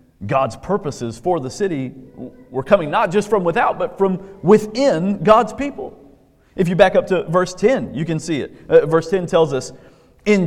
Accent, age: American, 40-59